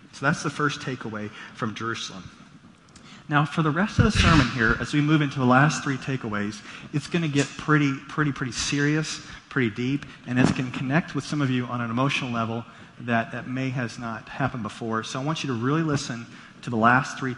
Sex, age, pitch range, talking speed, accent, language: male, 40-59, 120-155 Hz, 220 wpm, American, English